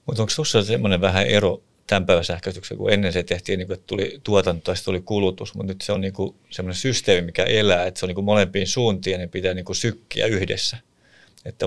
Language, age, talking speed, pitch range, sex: English, 30-49, 195 wpm, 90-100 Hz, male